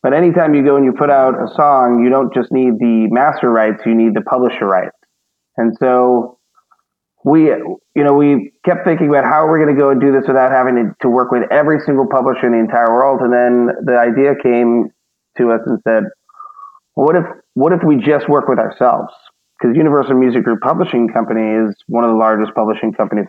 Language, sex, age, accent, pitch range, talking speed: English, male, 30-49, American, 115-135 Hz, 215 wpm